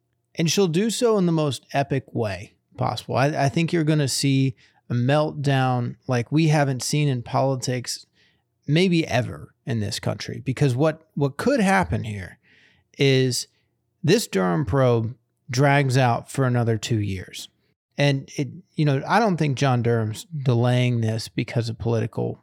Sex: male